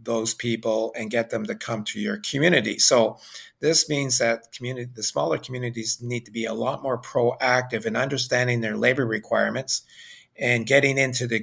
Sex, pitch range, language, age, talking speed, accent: male, 110-125 Hz, English, 50-69, 180 wpm, American